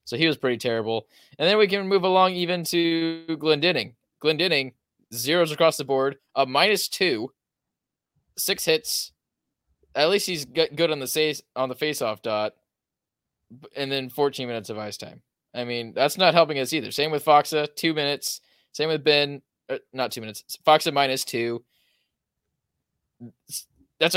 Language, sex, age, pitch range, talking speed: English, male, 20-39, 130-160 Hz, 150 wpm